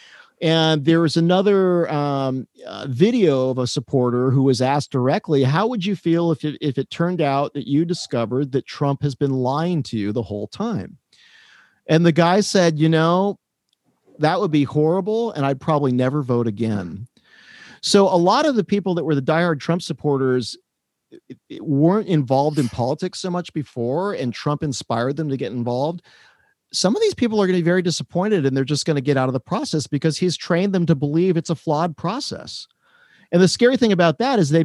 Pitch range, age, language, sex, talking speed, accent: 135-180 Hz, 40-59, English, male, 200 wpm, American